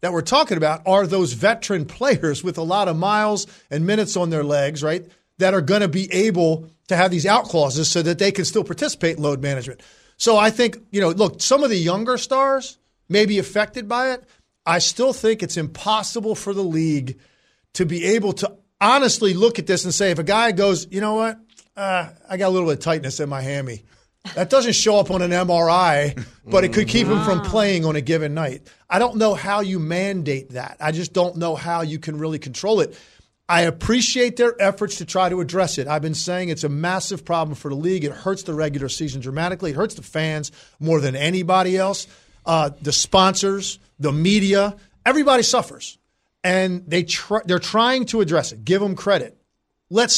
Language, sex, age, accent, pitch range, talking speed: English, male, 40-59, American, 155-205 Hz, 210 wpm